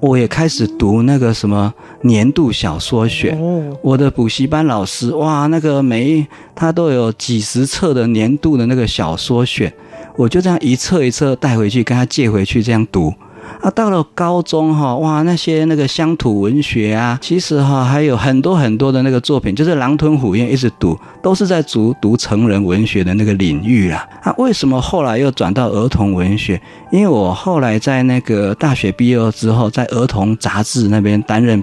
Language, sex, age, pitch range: Chinese, male, 40-59, 105-140 Hz